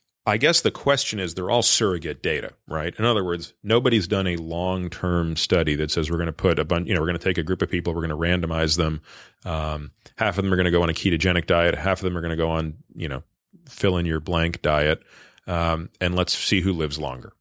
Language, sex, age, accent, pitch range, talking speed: English, male, 30-49, American, 80-105 Hz, 260 wpm